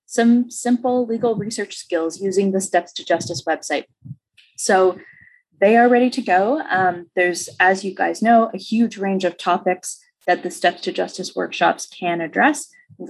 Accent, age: American, 20-39